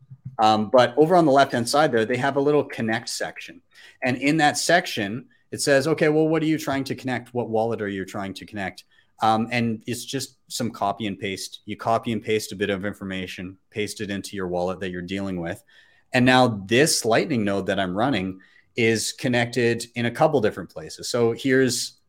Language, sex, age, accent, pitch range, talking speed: English, male, 30-49, American, 100-130 Hz, 210 wpm